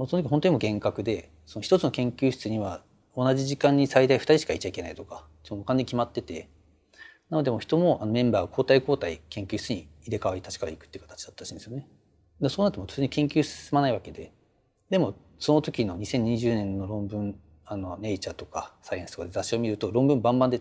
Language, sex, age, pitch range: Japanese, male, 40-59, 90-130 Hz